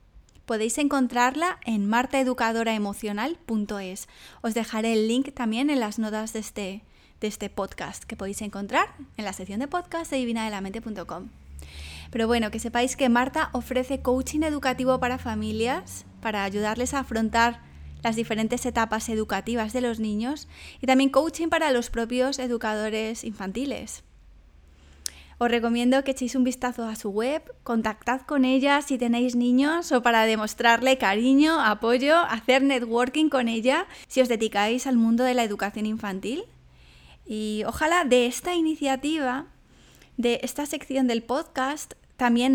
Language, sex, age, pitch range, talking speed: Spanish, female, 20-39, 215-265 Hz, 140 wpm